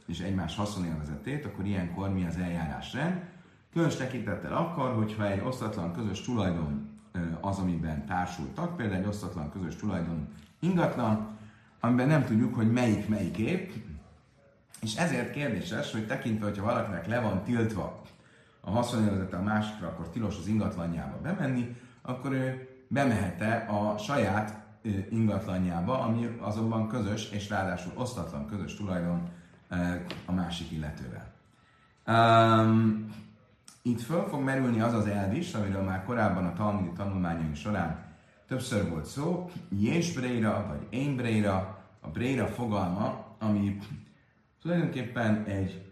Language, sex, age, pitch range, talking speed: Hungarian, male, 30-49, 90-120 Hz, 125 wpm